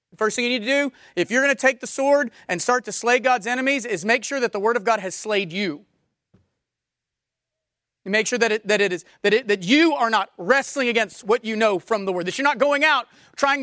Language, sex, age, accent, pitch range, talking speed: English, male, 30-49, American, 210-290 Hz, 255 wpm